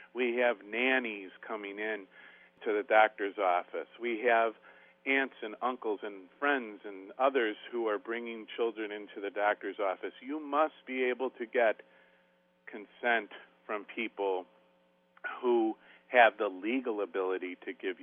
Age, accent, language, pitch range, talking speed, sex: 50-69, American, English, 100-150 Hz, 140 wpm, male